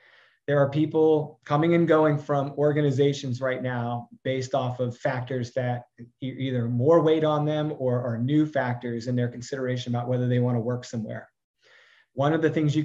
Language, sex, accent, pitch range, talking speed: English, male, American, 125-155 Hz, 175 wpm